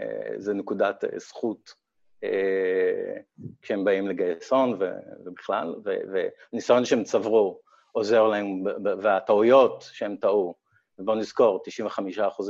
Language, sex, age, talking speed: Hebrew, male, 50-69, 85 wpm